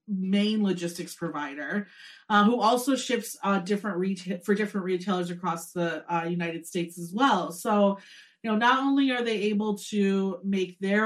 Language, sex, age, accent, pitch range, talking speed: English, female, 30-49, American, 180-230 Hz, 170 wpm